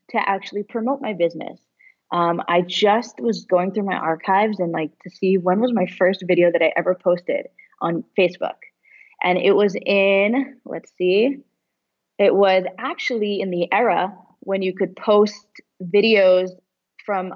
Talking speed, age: 160 wpm, 20-39